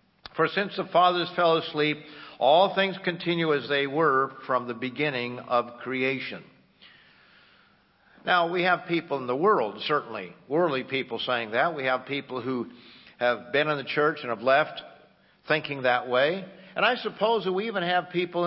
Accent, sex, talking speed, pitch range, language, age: American, male, 170 wpm, 120-160 Hz, English, 50-69